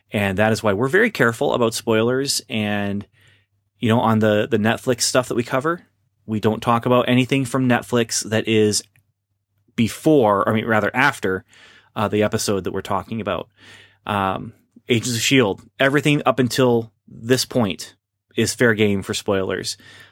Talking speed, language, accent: 165 wpm, English, American